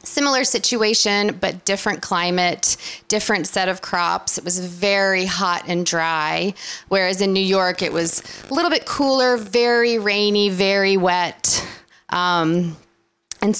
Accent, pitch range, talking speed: American, 180-210 Hz, 135 wpm